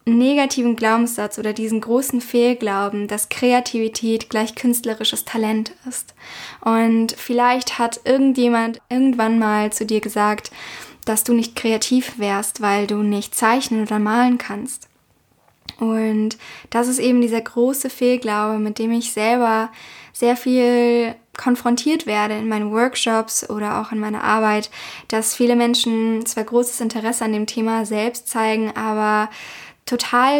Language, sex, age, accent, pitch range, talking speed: English, female, 10-29, German, 220-245 Hz, 135 wpm